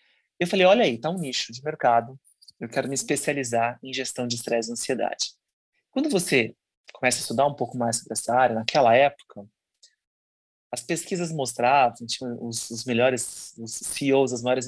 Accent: Brazilian